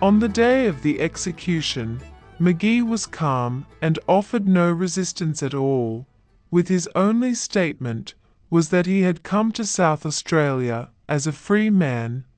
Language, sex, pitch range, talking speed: English, female, 135-190 Hz, 150 wpm